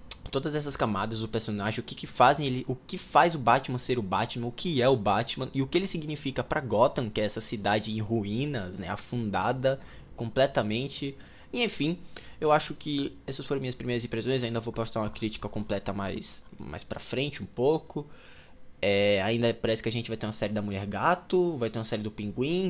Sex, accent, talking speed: male, Brazilian, 215 wpm